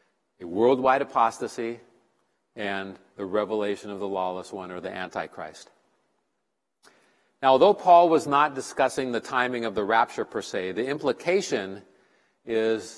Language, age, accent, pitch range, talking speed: English, 50-69, American, 105-130 Hz, 135 wpm